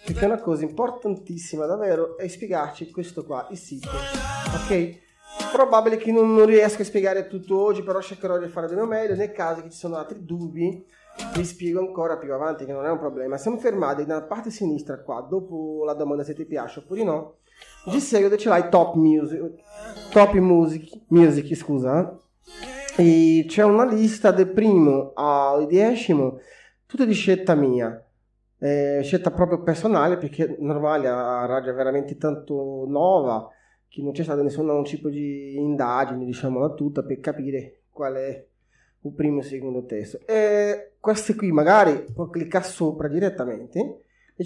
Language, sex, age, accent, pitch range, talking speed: Italian, male, 20-39, native, 140-190 Hz, 165 wpm